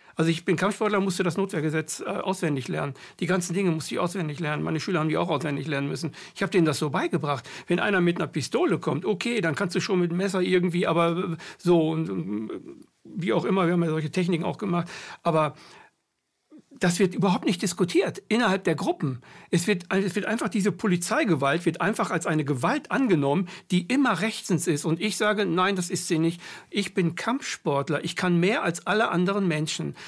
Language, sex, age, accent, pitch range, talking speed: German, male, 60-79, German, 160-195 Hz, 200 wpm